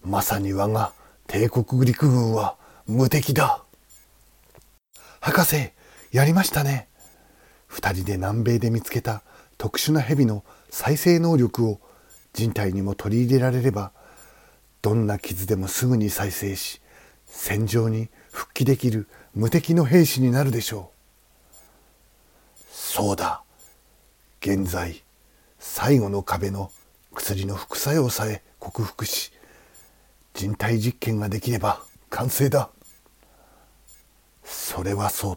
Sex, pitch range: male, 95-120 Hz